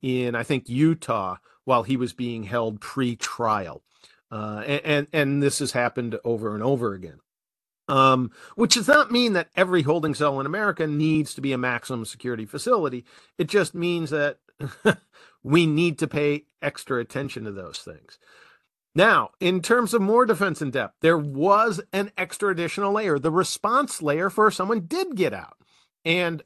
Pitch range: 130-180 Hz